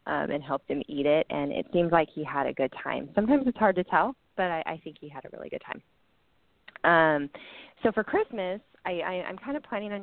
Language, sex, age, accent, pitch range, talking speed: English, female, 20-39, American, 145-175 Hz, 235 wpm